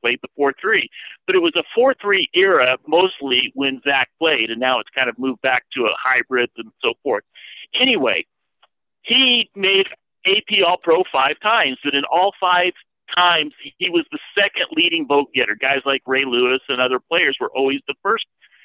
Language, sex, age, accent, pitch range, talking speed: English, male, 50-69, American, 135-195 Hz, 175 wpm